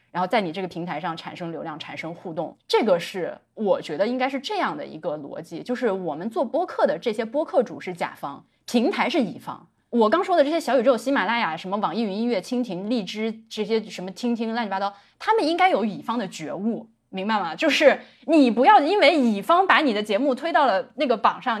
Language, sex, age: Chinese, female, 20-39